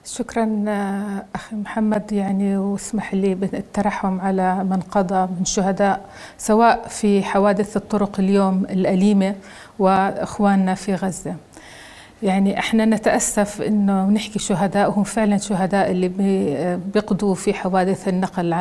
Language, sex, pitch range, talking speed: Arabic, female, 195-225 Hz, 110 wpm